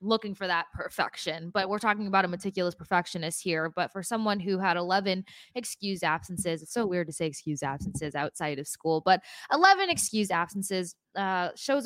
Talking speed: 180 wpm